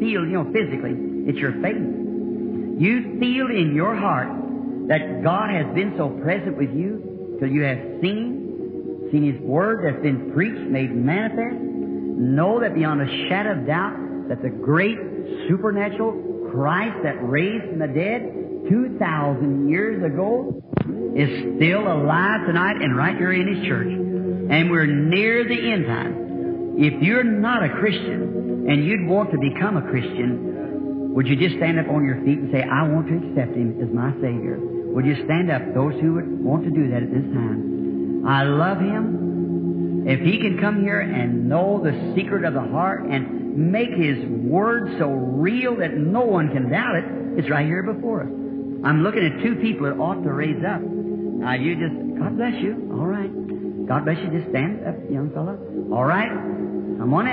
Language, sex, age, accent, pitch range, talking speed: English, male, 50-69, American, 125-200 Hz, 180 wpm